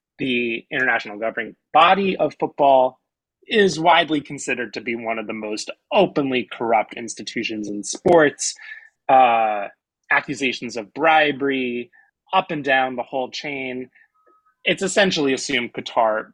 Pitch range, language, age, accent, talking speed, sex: 120-150 Hz, English, 30-49, American, 125 wpm, male